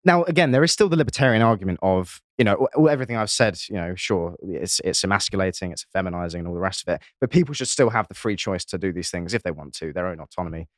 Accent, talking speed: British, 260 wpm